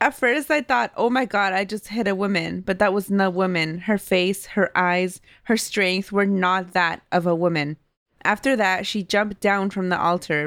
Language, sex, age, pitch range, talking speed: English, female, 20-39, 170-210 Hz, 220 wpm